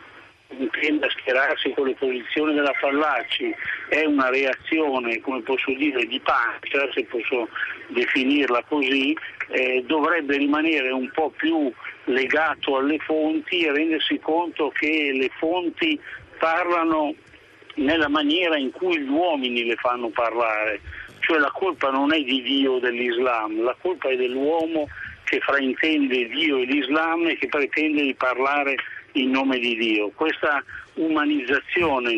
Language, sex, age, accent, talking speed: Italian, male, 60-79, native, 135 wpm